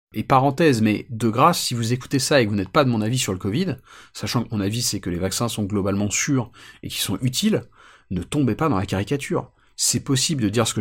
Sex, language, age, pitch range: male, French, 40-59, 110-140 Hz